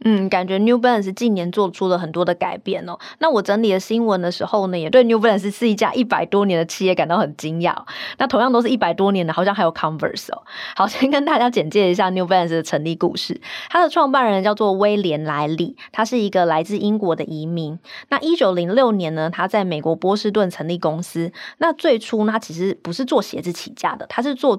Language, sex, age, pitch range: Chinese, female, 20-39, 175-235 Hz